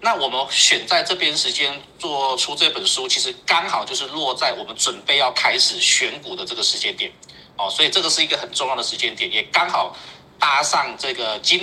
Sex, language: male, Chinese